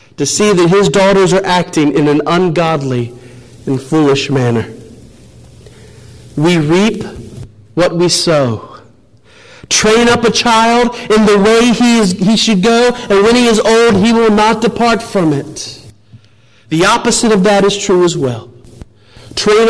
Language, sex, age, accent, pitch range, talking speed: English, male, 40-59, American, 125-205 Hz, 150 wpm